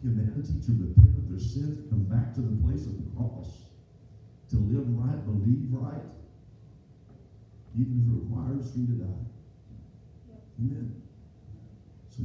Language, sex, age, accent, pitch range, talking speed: English, male, 50-69, American, 105-120 Hz, 135 wpm